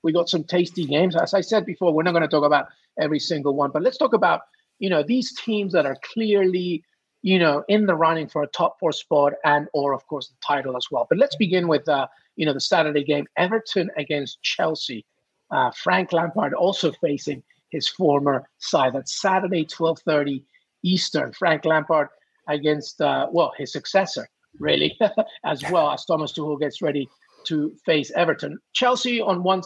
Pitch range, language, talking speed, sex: 145-180 Hz, English, 190 wpm, male